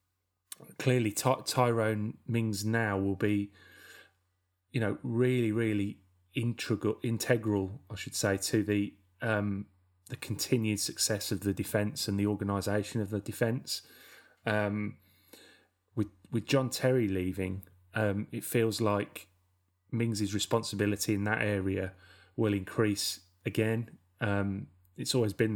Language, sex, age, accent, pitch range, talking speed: English, male, 30-49, British, 95-110 Hz, 125 wpm